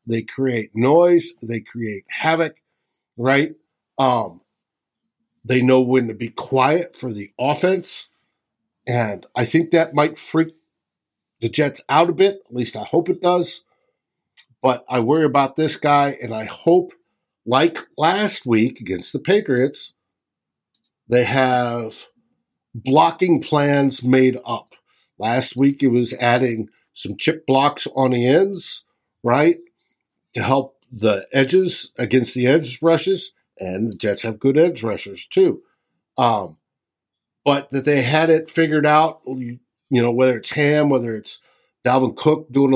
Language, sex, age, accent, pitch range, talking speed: English, male, 60-79, American, 120-160 Hz, 145 wpm